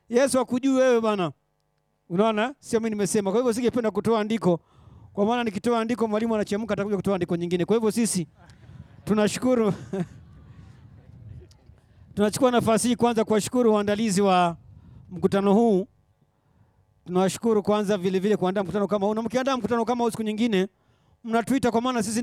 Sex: male